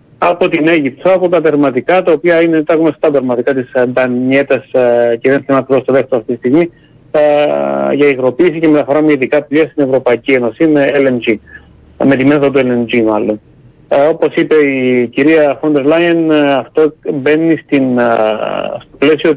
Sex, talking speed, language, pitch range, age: male, 160 wpm, Greek, 125-150 Hz, 30-49